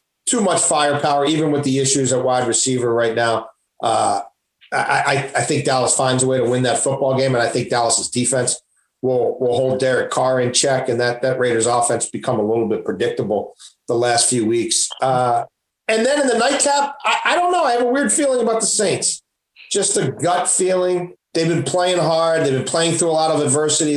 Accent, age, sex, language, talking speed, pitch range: American, 40-59, male, English, 215 wpm, 125-180 Hz